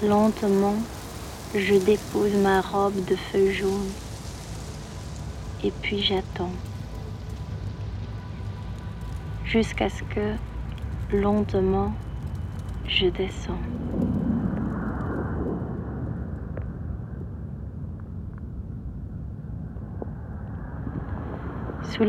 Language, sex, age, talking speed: French, female, 40-59, 50 wpm